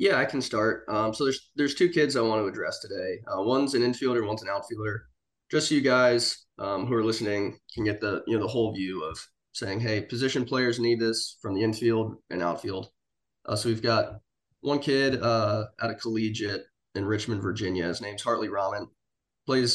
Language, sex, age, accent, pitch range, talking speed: English, male, 20-39, American, 105-130 Hz, 205 wpm